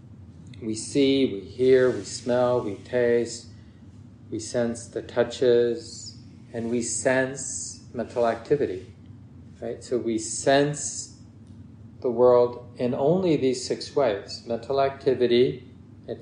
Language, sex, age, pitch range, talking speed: English, male, 40-59, 110-125 Hz, 115 wpm